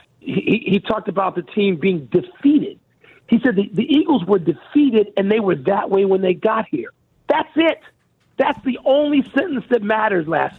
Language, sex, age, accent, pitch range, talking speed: English, male, 50-69, American, 170-225 Hz, 185 wpm